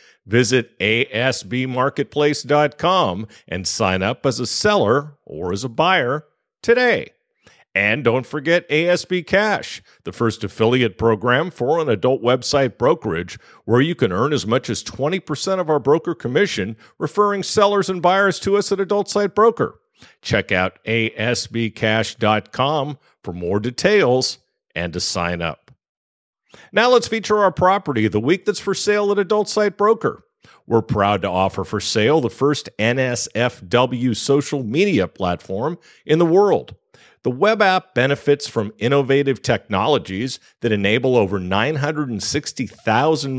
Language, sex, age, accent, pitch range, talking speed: English, male, 50-69, American, 110-175 Hz, 135 wpm